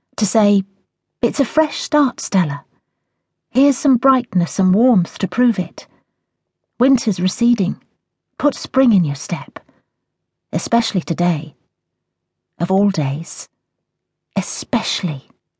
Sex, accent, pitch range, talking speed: female, British, 175-230 Hz, 110 wpm